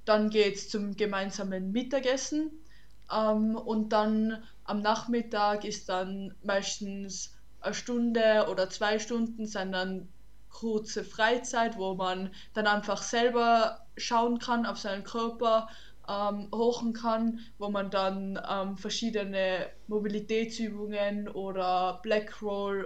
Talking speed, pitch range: 115 wpm, 195-225 Hz